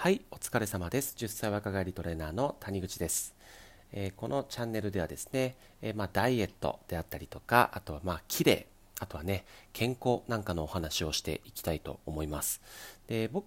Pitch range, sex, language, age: 80-110 Hz, male, Japanese, 40-59